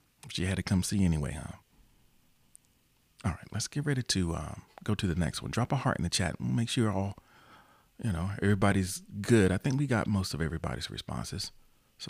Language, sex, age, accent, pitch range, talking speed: English, male, 40-59, American, 85-105 Hz, 215 wpm